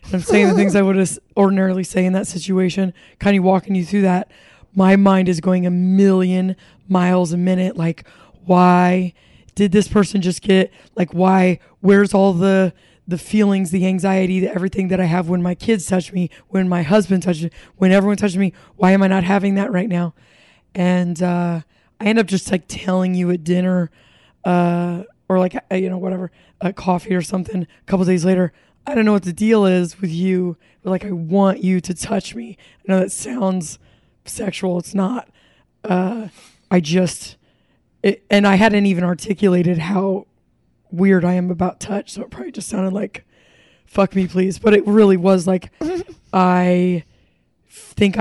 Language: English